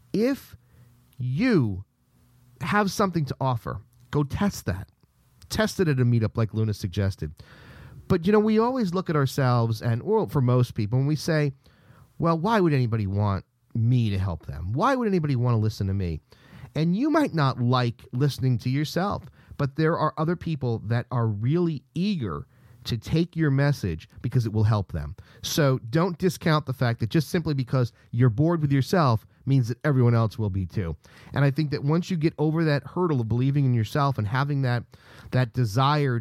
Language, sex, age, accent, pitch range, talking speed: English, male, 40-59, American, 115-150 Hz, 190 wpm